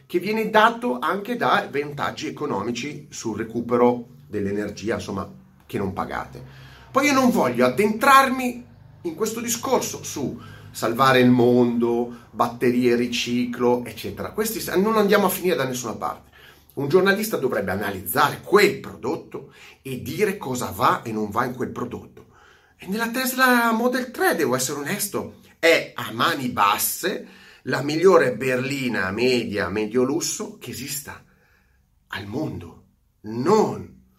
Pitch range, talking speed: 115-180 Hz, 135 wpm